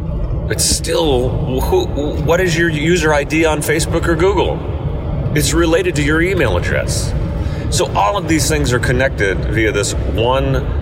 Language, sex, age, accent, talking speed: English, male, 30-49, American, 150 wpm